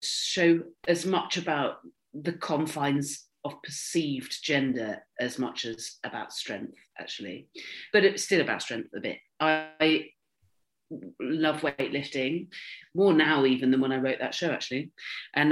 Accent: British